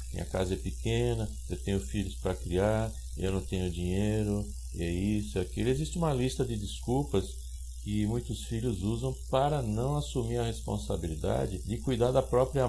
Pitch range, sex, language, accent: 90-120 Hz, male, Portuguese, Brazilian